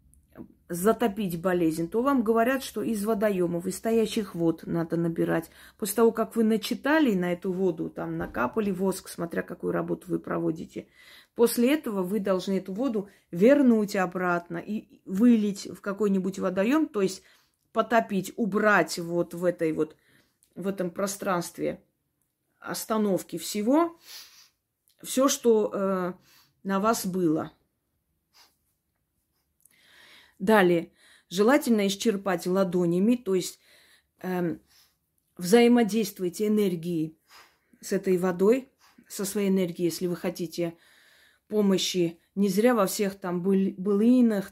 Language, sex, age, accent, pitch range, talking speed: Russian, female, 30-49, native, 175-225 Hz, 115 wpm